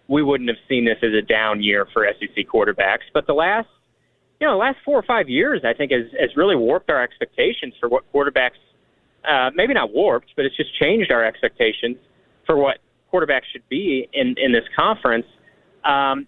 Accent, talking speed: American, 205 wpm